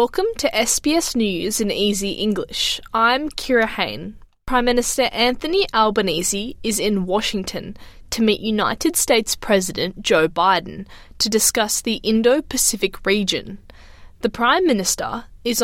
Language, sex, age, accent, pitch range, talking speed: English, female, 20-39, Australian, 200-235 Hz, 130 wpm